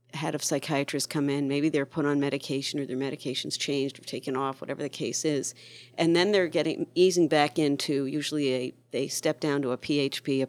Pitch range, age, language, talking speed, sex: 135-170 Hz, 50-69, English, 210 wpm, female